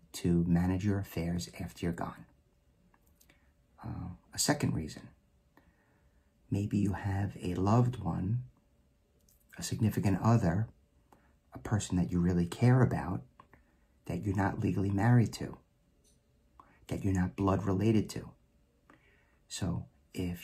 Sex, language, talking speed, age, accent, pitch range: male, English, 120 wpm, 50-69, American, 85-105 Hz